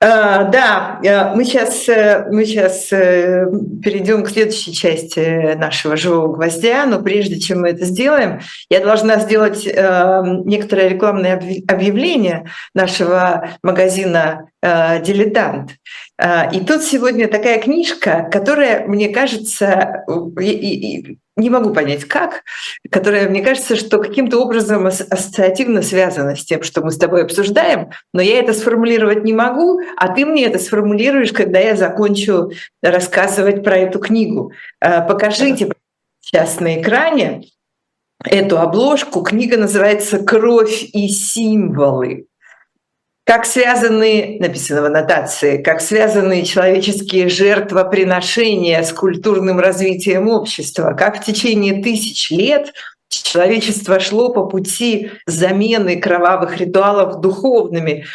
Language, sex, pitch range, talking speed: Russian, female, 180-220 Hz, 110 wpm